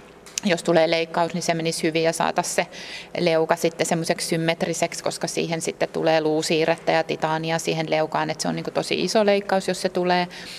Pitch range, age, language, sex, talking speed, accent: 165-190 Hz, 30-49, Finnish, female, 180 wpm, native